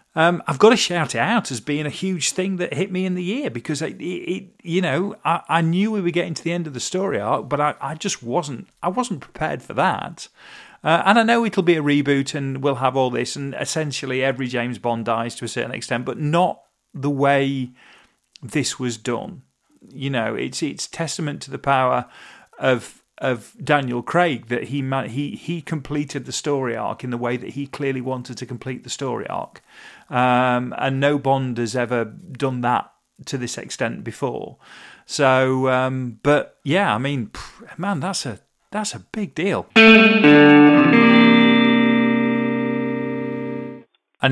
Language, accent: English, British